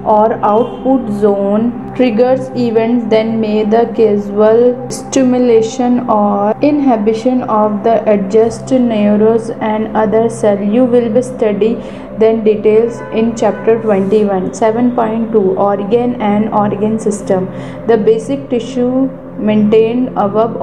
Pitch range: 210-235 Hz